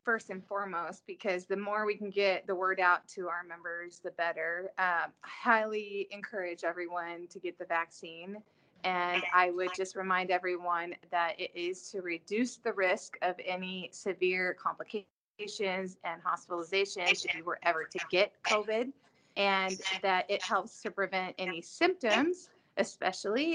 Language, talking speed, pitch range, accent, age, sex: English, 155 wpm, 180-215 Hz, American, 30-49, female